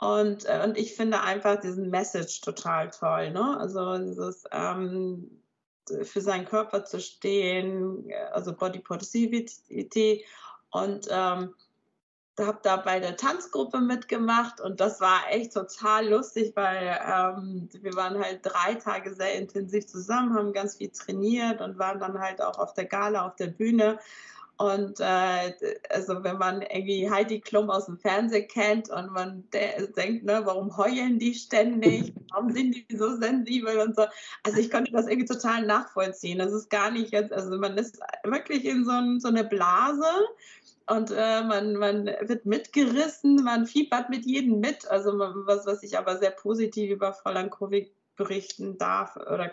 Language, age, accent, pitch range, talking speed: German, 20-39, German, 190-220 Hz, 160 wpm